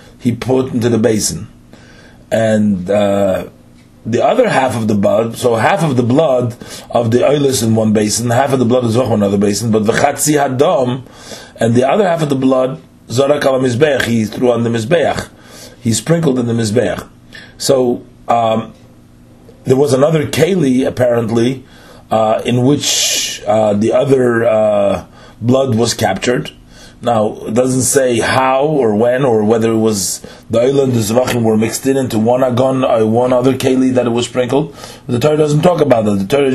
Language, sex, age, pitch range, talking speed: English, male, 30-49, 110-135 Hz, 185 wpm